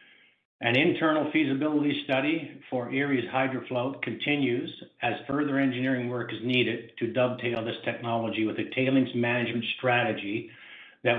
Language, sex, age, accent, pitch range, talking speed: English, male, 60-79, American, 115-135 Hz, 130 wpm